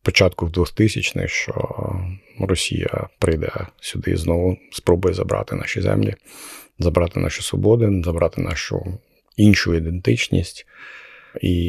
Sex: male